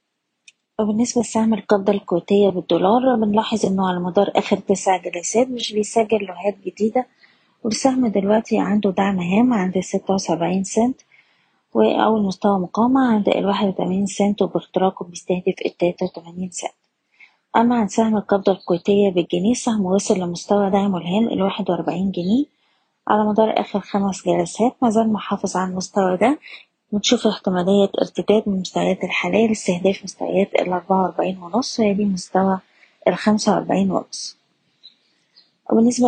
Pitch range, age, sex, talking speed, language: 190-220 Hz, 20-39, female, 130 wpm, Arabic